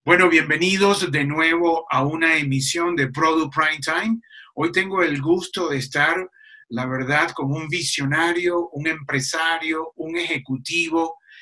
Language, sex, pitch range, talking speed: Spanish, male, 145-185 Hz, 135 wpm